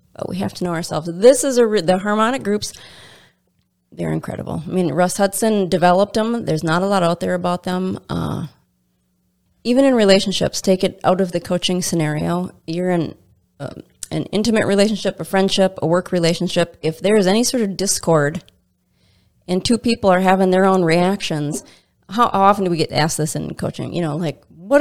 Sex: female